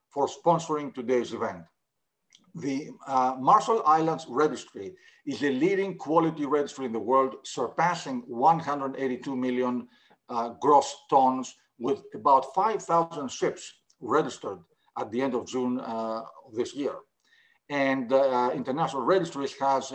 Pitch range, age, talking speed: 125-165 Hz, 50-69, 125 wpm